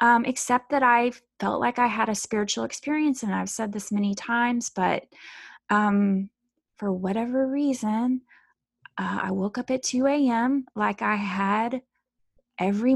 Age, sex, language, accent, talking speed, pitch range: 20-39, female, English, American, 155 wpm, 200-245 Hz